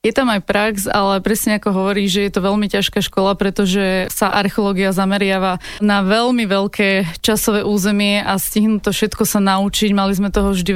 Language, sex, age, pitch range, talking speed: Slovak, female, 20-39, 190-205 Hz, 185 wpm